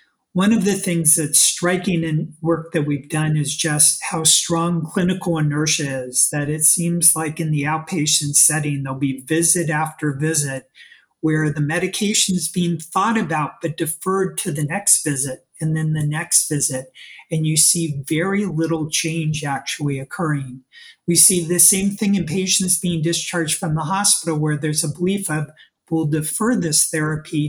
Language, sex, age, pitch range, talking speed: English, male, 40-59, 150-175 Hz, 170 wpm